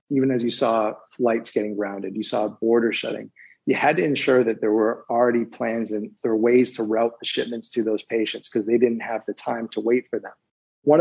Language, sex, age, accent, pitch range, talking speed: English, male, 30-49, American, 110-130 Hz, 230 wpm